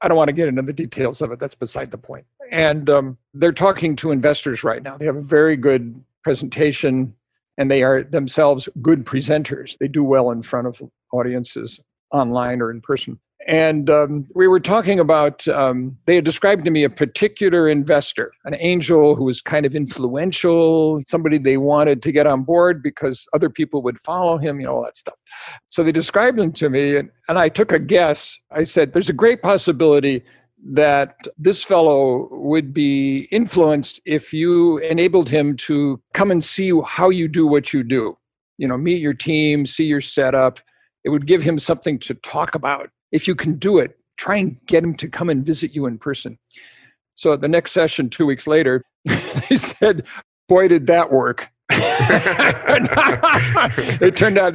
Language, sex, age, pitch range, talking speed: English, male, 50-69, 140-170 Hz, 190 wpm